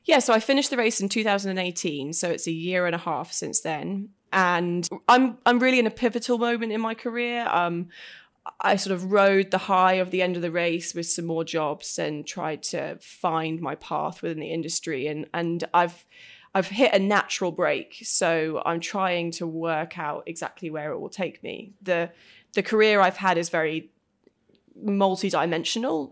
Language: English